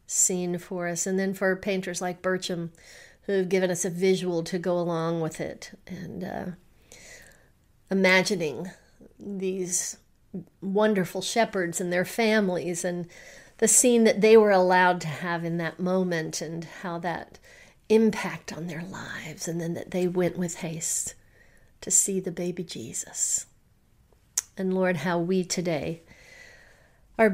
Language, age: English, 40-59